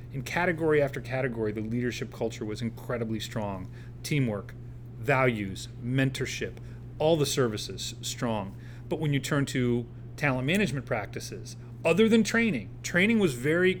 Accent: American